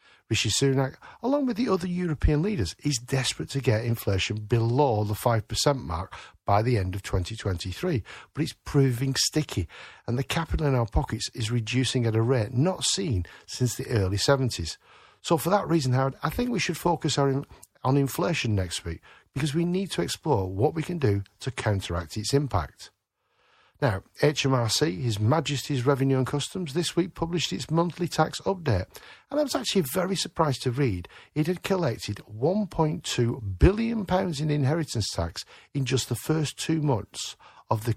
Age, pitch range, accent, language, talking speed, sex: 50-69, 105-155 Hz, British, English, 170 wpm, male